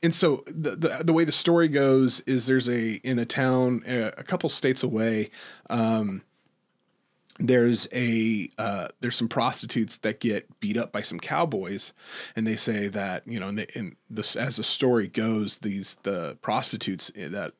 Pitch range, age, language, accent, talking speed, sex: 110-130 Hz, 30-49, English, American, 175 wpm, male